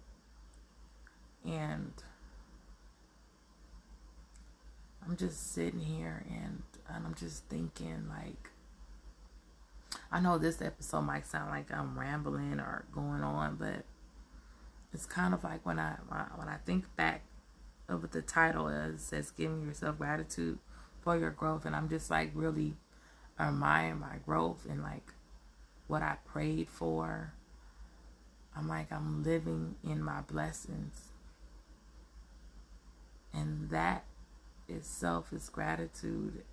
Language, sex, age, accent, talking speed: English, female, 20-39, American, 120 wpm